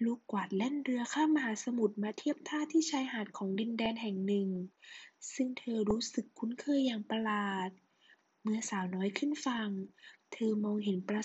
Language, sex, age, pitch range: Thai, female, 20-39, 205-270 Hz